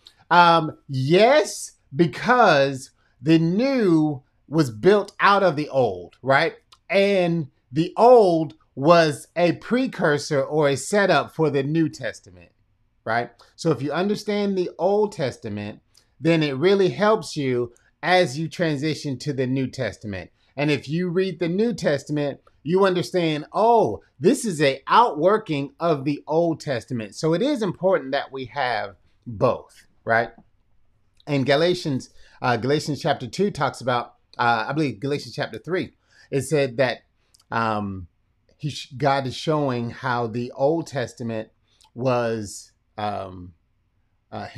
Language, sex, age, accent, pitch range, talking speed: English, male, 30-49, American, 115-160 Hz, 135 wpm